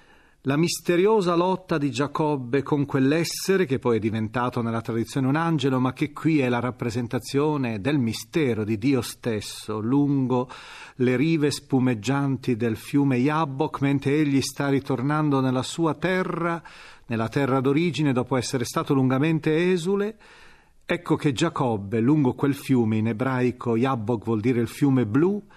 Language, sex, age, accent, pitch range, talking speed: Italian, male, 40-59, native, 120-160 Hz, 145 wpm